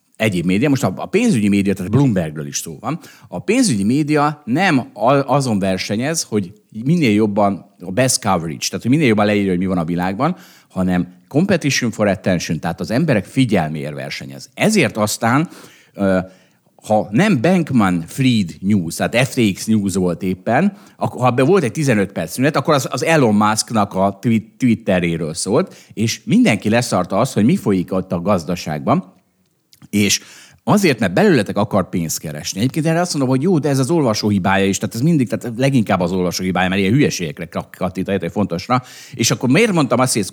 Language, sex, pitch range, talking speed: Hungarian, male, 95-135 Hz, 175 wpm